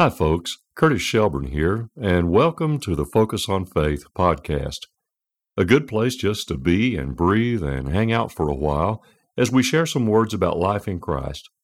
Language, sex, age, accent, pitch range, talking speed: English, male, 60-79, American, 80-115 Hz, 185 wpm